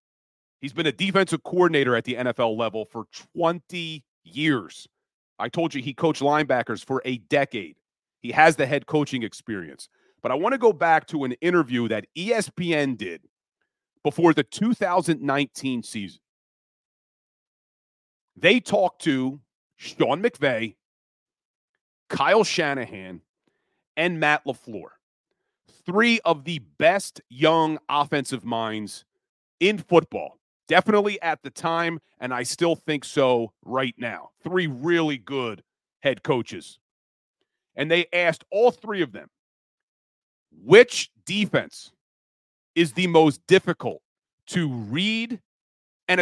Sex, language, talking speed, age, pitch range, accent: male, English, 120 wpm, 40-59, 125-175 Hz, American